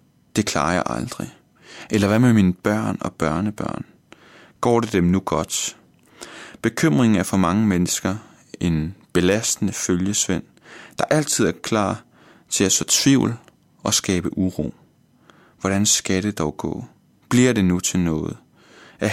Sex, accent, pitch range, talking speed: male, native, 90-110 Hz, 145 wpm